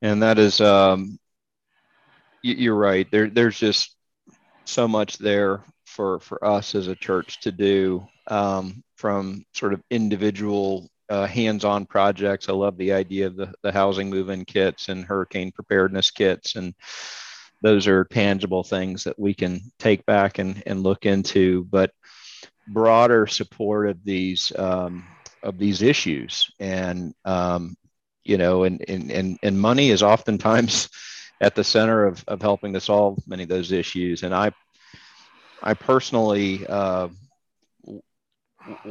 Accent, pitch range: American, 90-105 Hz